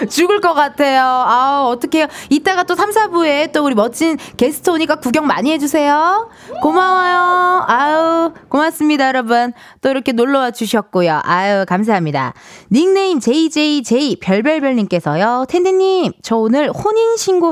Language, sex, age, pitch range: Korean, female, 20-39, 220-330 Hz